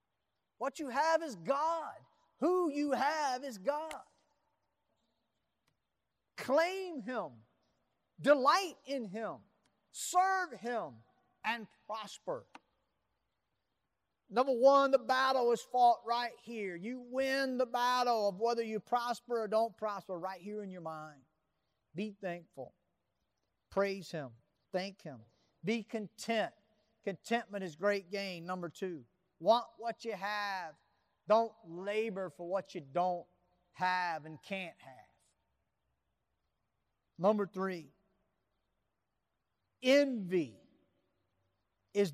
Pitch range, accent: 165-245 Hz, American